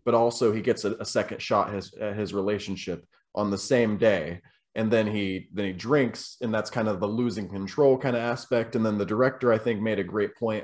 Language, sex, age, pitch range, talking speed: English, male, 20-39, 105-135 Hz, 225 wpm